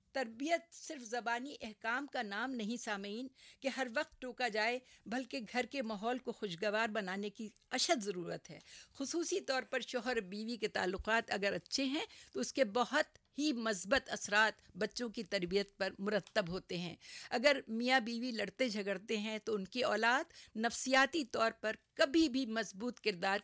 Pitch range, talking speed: 210-260 Hz, 165 wpm